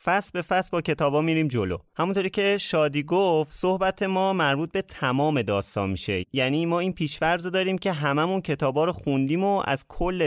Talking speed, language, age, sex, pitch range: 180 wpm, Persian, 30-49, male, 125-175 Hz